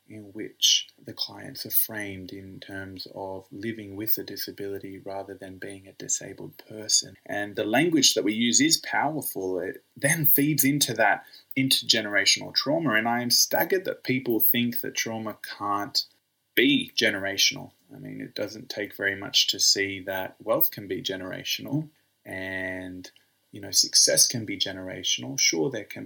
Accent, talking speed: Australian, 160 wpm